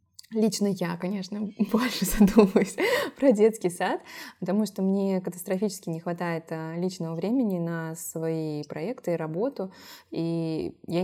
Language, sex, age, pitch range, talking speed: Russian, female, 20-39, 165-205 Hz, 125 wpm